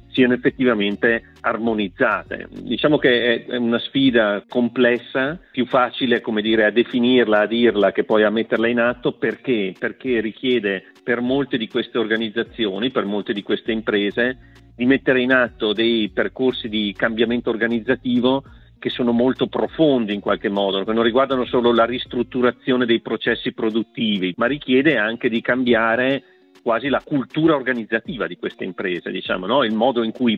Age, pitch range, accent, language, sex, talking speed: 50-69, 110-130 Hz, native, Italian, male, 155 wpm